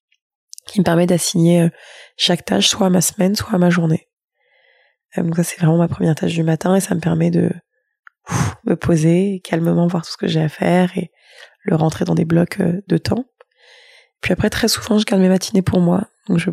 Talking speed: 215 wpm